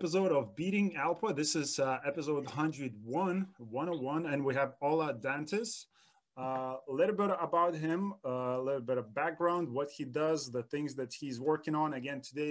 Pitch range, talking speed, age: 135-165 Hz, 190 wpm, 20-39